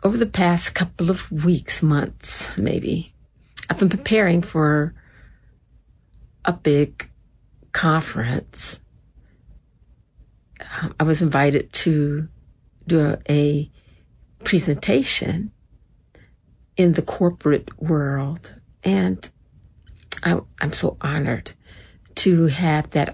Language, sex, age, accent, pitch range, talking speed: English, female, 50-69, American, 140-170 Hz, 90 wpm